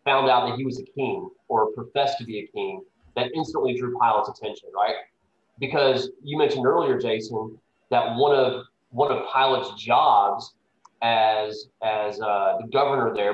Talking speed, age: 165 wpm, 30-49